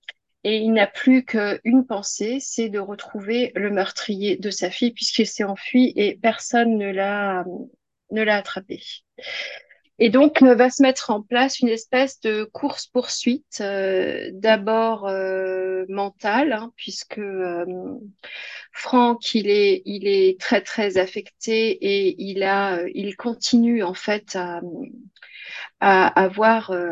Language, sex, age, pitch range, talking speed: French, female, 30-49, 195-245 Hz, 140 wpm